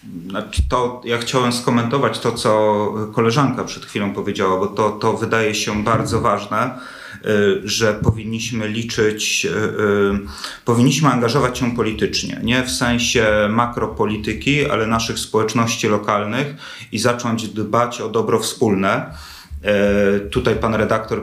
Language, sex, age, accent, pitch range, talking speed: Polish, male, 30-49, native, 110-120 Hz, 115 wpm